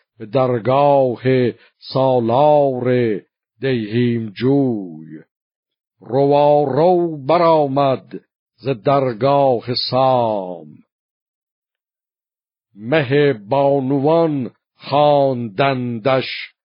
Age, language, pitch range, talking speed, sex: 50-69, Persian, 120-140 Hz, 55 wpm, male